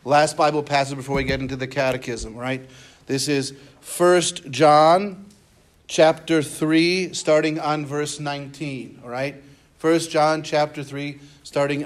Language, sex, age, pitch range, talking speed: English, male, 50-69, 135-160 Hz, 135 wpm